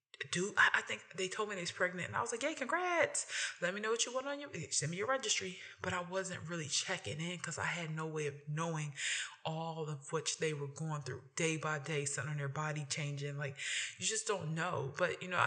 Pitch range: 150-185 Hz